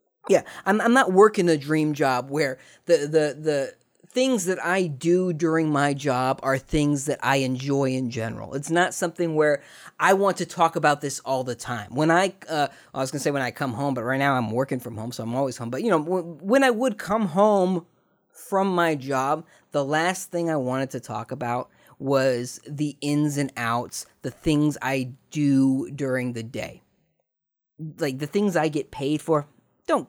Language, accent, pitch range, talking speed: English, American, 135-185 Hz, 205 wpm